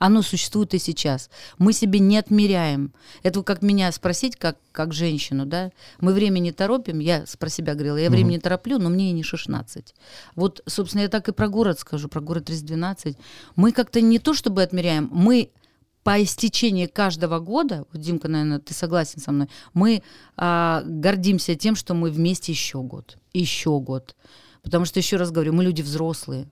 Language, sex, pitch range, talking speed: Russian, female, 155-195 Hz, 180 wpm